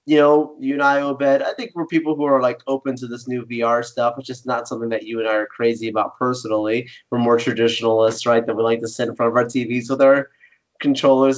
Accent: American